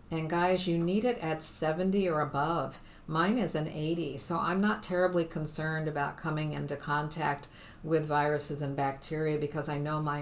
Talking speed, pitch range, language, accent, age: 175 wpm, 145-165 Hz, English, American, 50-69